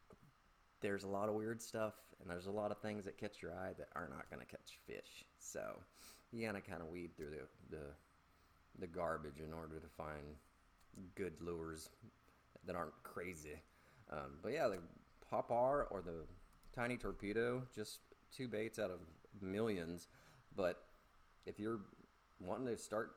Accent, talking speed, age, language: American, 165 wpm, 30-49, English